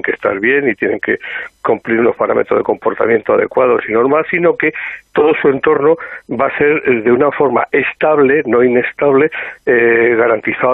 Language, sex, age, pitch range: Spanish, male, 60-79, 115-185 Hz